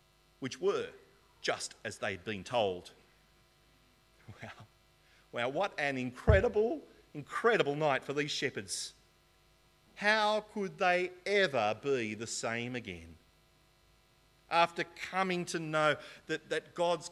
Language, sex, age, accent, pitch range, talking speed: English, male, 40-59, Australian, 125-190 Hz, 110 wpm